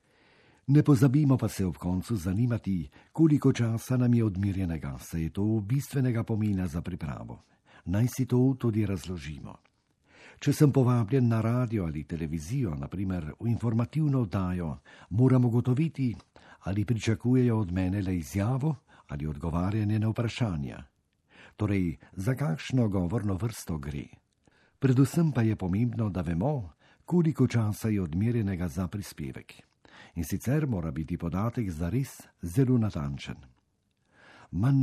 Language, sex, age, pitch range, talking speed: Italian, male, 50-69, 90-125 Hz, 125 wpm